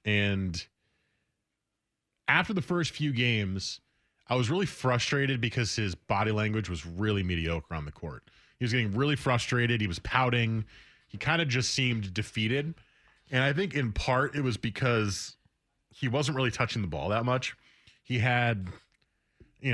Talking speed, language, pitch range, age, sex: 160 wpm, English, 105-130 Hz, 20-39, male